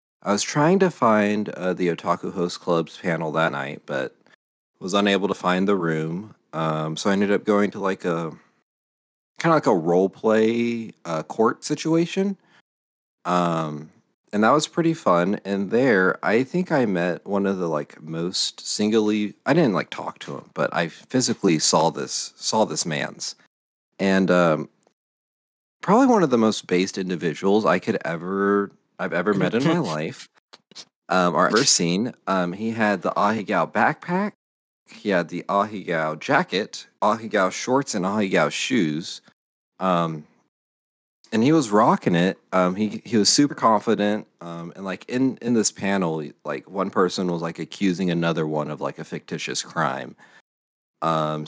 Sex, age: male, 30-49